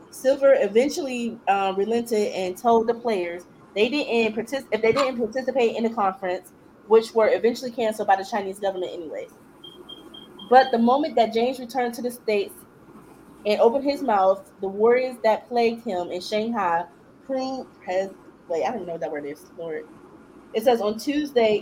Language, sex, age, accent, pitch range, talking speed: English, female, 20-39, American, 190-240 Hz, 170 wpm